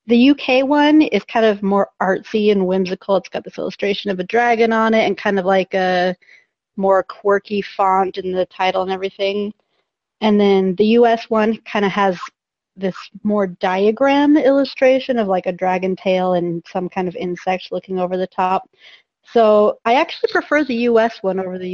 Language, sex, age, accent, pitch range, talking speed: English, female, 30-49, American, 190-225 Hz, 185 wpm